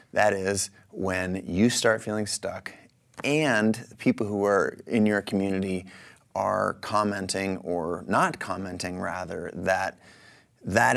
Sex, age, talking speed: male, 30-49, 120 wpm